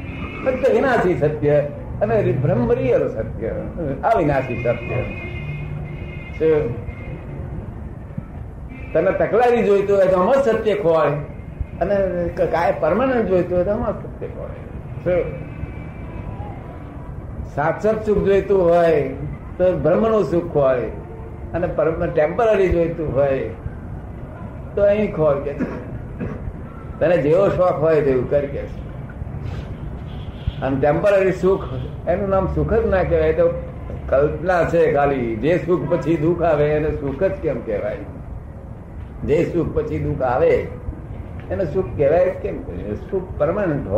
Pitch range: 130-190 Hz